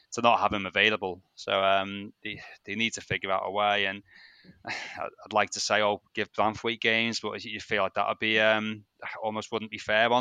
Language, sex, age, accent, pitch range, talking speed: English, male, 20-39, British, 100-110 Hz, 225 wpm